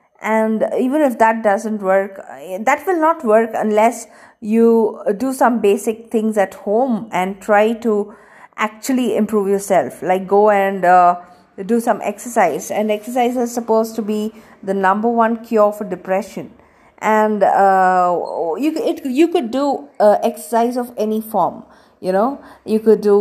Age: 50-69